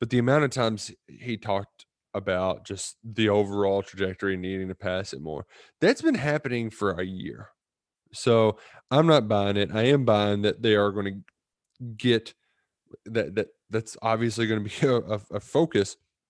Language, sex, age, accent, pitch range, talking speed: English, male, 20-39, American, 100-125 Hz, 175 wpm